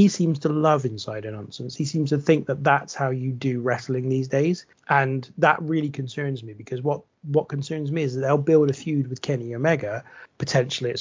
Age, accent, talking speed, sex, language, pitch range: 30-49, British, 215 wpm, male, English, 130-150 Hz